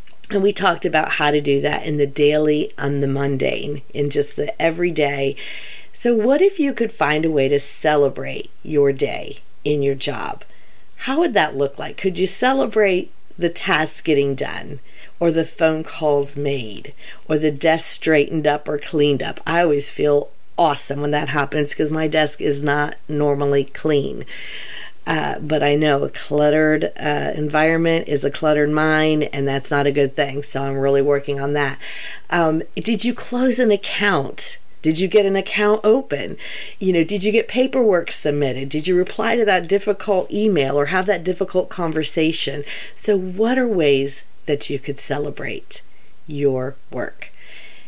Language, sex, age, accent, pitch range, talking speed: English, female, 40-59, American, 145-185 Hz, 175 wpm